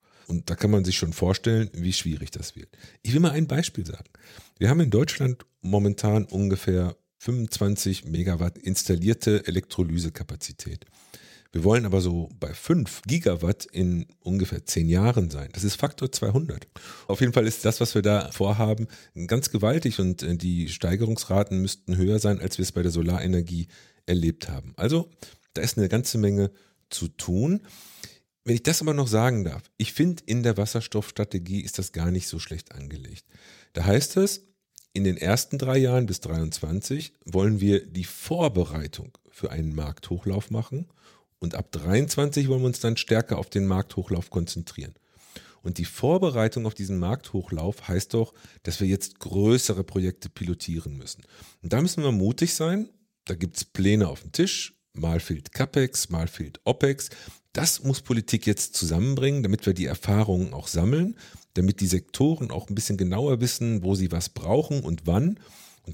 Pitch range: 90-120 Hz